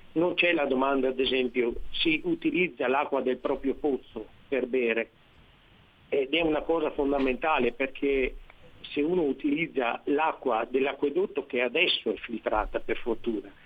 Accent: native